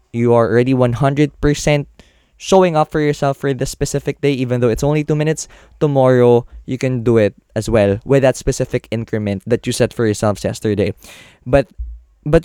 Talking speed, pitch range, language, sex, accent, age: 180 wpm, 115-160 Hz, Filipino, male, native, 20-39